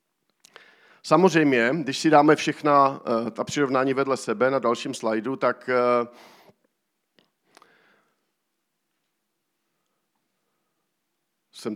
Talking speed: 70 wpm